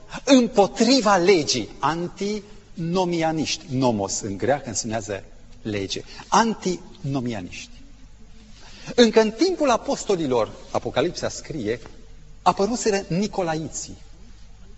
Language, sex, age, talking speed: Romanian, male, 40-59, 70 wpm